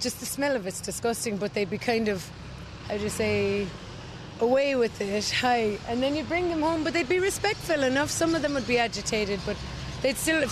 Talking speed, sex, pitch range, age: 220 wpm, female, 210-260 Hz, 30-49